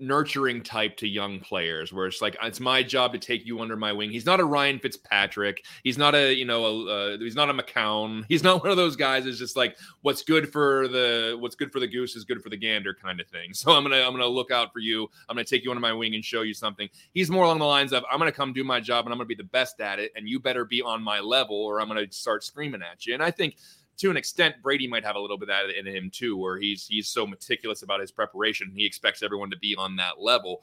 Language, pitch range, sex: English, 105-130 Hz, male